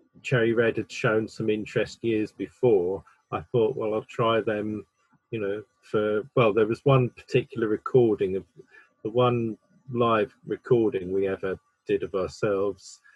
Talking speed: 150 wpm